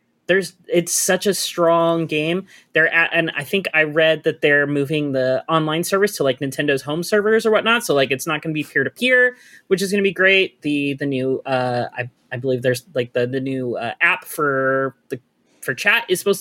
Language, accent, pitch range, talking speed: English, American, 145-195 Hz, 225 wpm